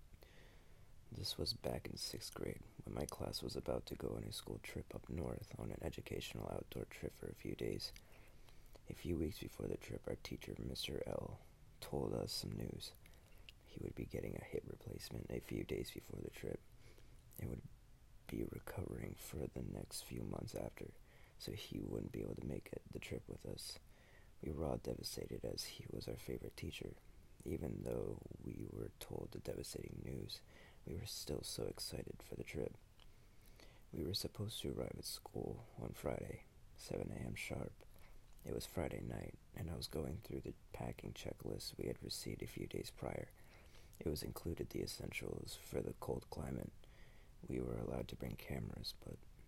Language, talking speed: English, 180 wpm